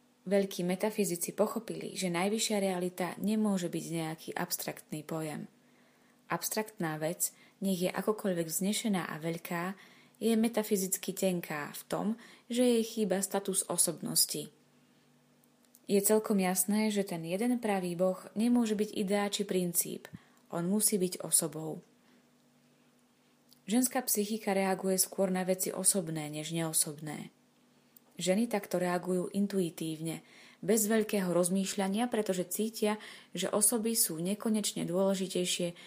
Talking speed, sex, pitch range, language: 115 wpm, female, 175-210 Hz, Slovak